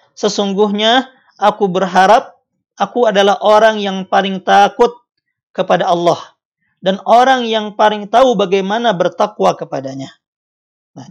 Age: 40-59